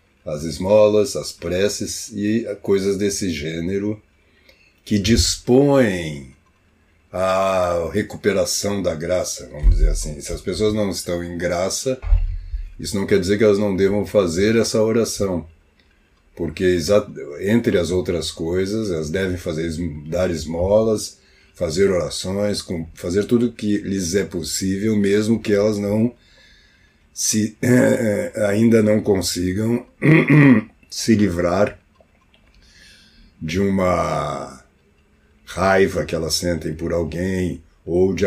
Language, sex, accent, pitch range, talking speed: Portuguese, male, Brazilian, 80-105 Hz, 115 wpm